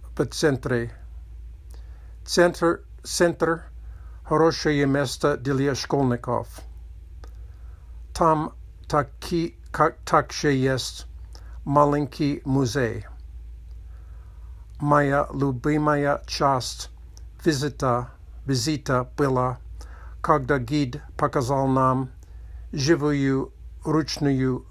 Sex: male